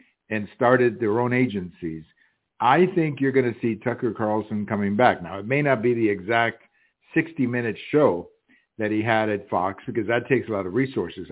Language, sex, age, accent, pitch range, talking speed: English, male, 60-79, American, 105-130 Hz, 190 wpm